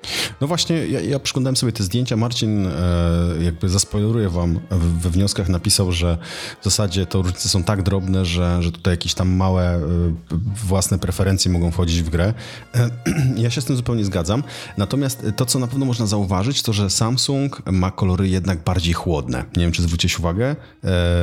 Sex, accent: male, native